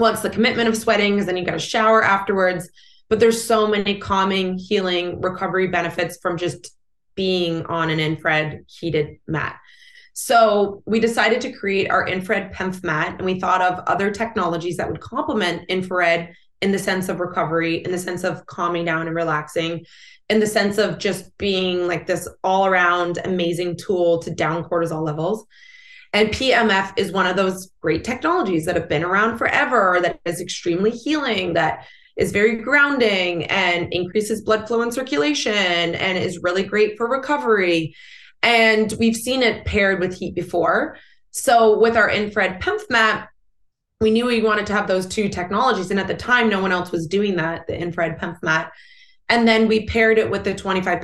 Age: 20-39